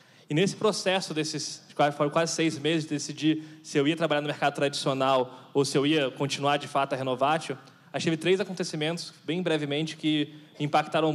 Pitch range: 145-180 Hz